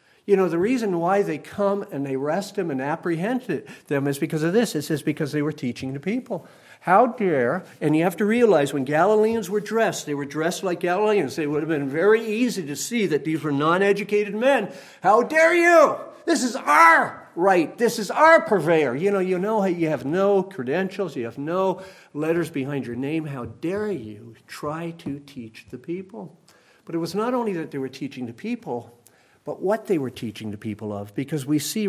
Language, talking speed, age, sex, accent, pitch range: English, 210 wpm, 50-69, male, American, 125-190 Hz